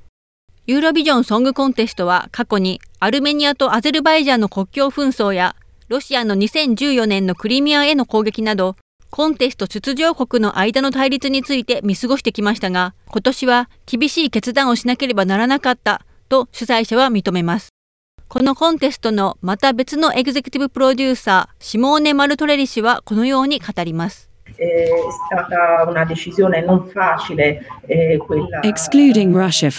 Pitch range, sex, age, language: 195-275 Hz, female, 40-59, Japanese